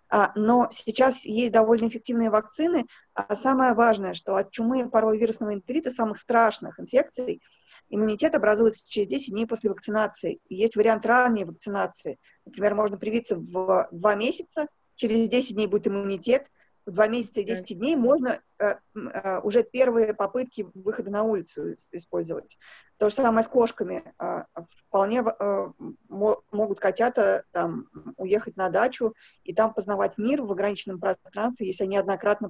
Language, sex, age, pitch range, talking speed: Russian, female, 20-39, 205-240 Hz, 150 wpm